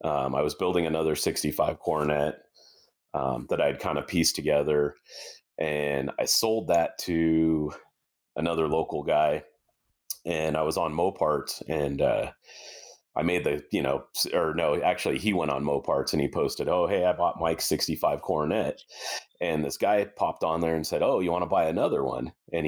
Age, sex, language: 30-49, male, English